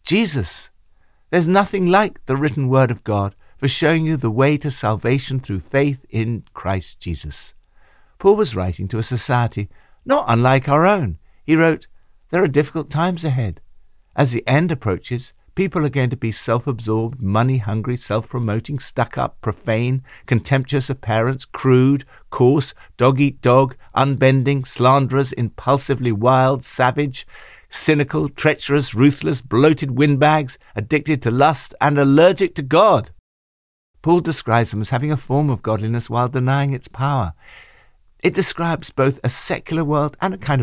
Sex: male